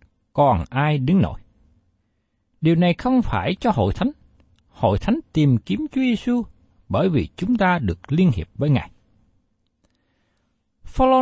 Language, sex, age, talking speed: Vietnamese, male, 60-79, 150 wpm